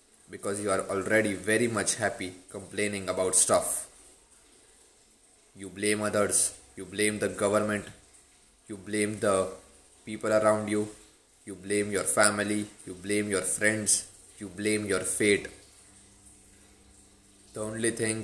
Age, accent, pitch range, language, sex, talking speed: 20-39, Indian, 90-105 Hz, English, male, 125 wpm